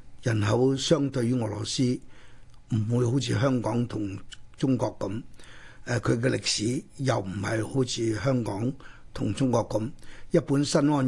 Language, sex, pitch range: Chinese, male, 115-155 Hz